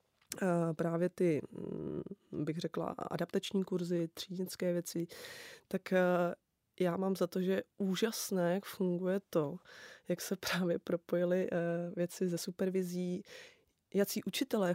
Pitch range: 170-190 Hz